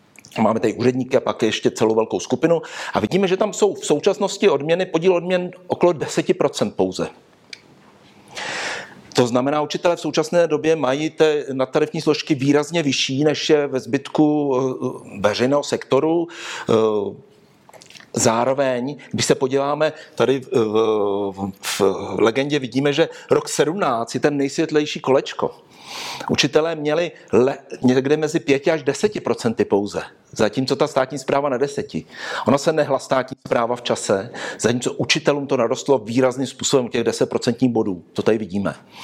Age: 50-69